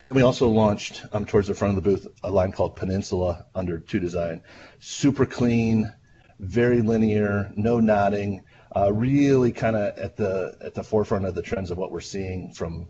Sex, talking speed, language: male, 185 wpm, English